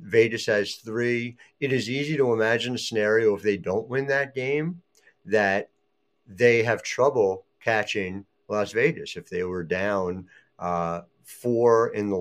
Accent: American